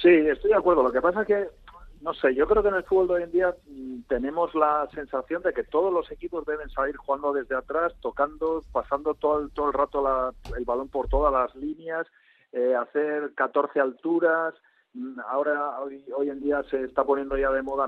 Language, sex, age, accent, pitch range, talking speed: Spanish, male, 40-59, Spanish, 140-200 Hz, 210 wpm